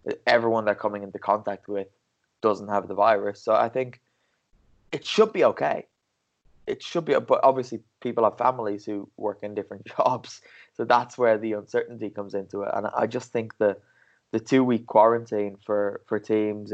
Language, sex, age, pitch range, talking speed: English, male, 20-39, 100-120 Hz, 175 wpm